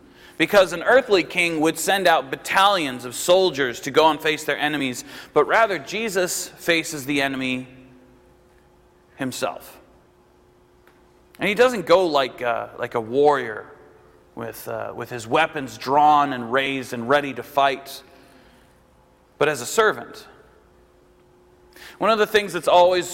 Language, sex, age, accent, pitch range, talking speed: English, male, 40-59, American, 140-190 Hz, 140 wpm